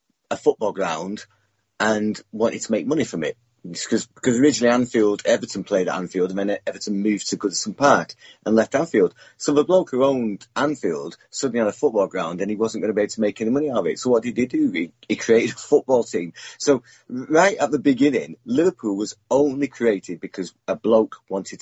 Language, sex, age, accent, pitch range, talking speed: English, male, 30-49, British, 100-125 Hz, 215 wpm